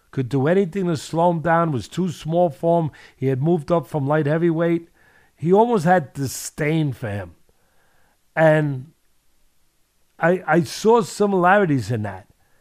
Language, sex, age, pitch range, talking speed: English, male, 50-69, 130-170 Hz, 150 wpm